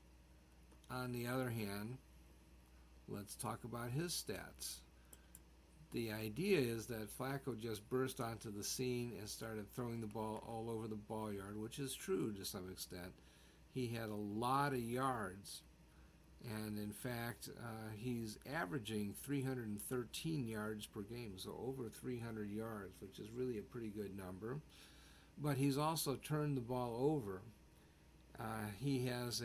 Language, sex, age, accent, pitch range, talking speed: English, male, 50-69, American, 100-120 Hz, 145 wpm